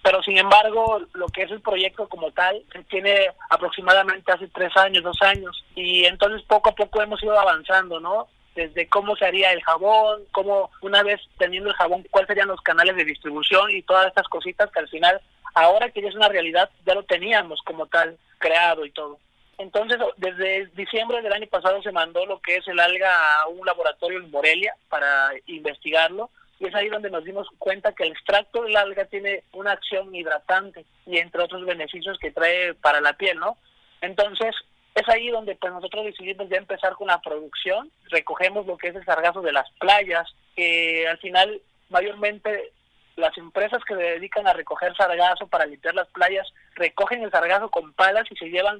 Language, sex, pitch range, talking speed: English, male, 170-200 Hz, 195 wpm